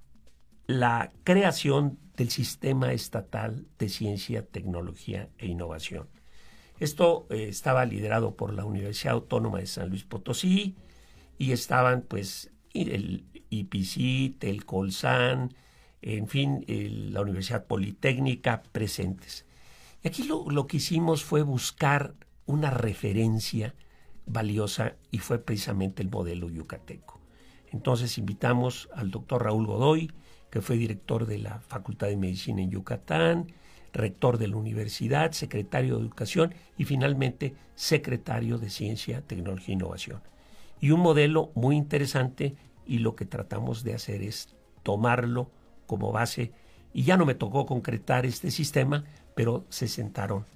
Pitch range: 100-135 Hz